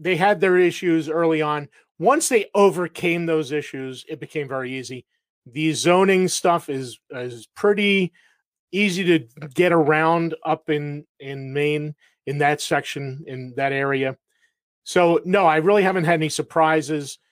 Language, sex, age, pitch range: English, male, 30-49, 140-180 Hz